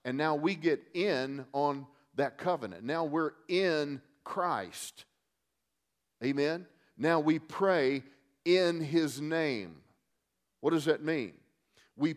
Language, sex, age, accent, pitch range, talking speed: Spanish, male, 50-69, American, 130-170 Hz, 120 wpm